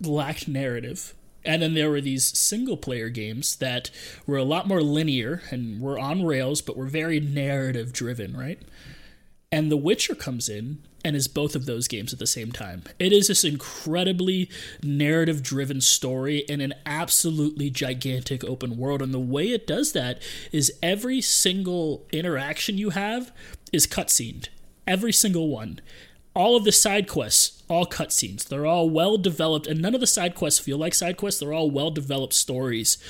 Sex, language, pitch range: male, English, 130-165 Hz